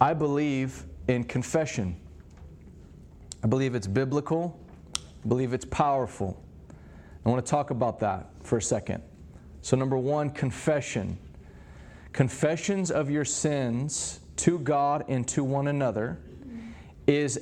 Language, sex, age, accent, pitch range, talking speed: English, male, 30-49, American, 95-140 Hz, 125 wpm